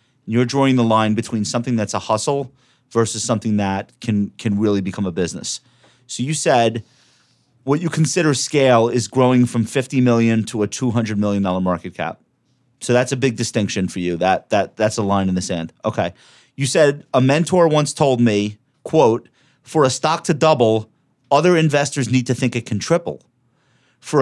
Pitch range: 110-135 Hz